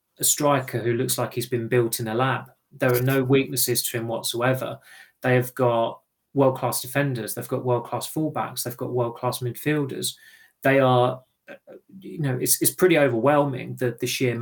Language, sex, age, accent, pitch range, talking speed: English, male, 30-49, British, 120-135 Hz, 175 wpm